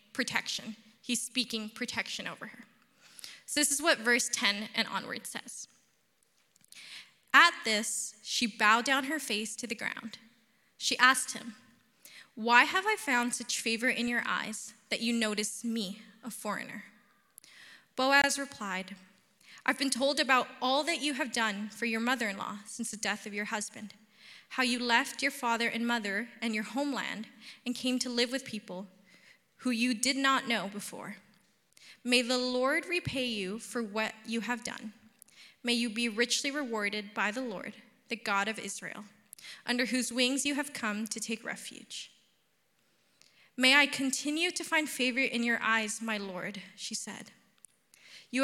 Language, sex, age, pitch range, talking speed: English, female, 20-39, 215-255 Hz, 160 wpm